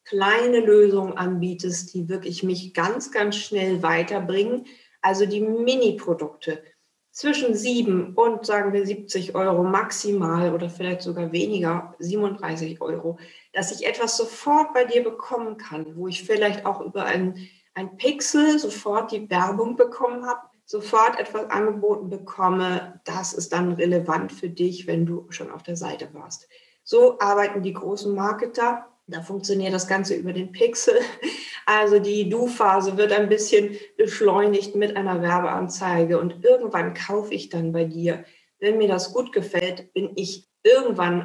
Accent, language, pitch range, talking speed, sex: German, German, 180-220 Hz, 150 wpm, female